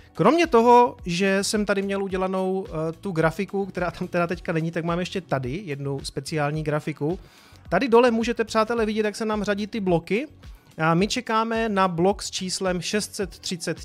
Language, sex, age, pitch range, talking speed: Czech, male, 30-49, 155-195 Hz, 175 wpm